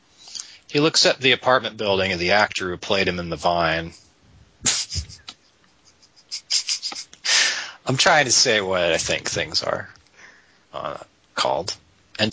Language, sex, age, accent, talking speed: English, male, 30-49, American, 130 wpm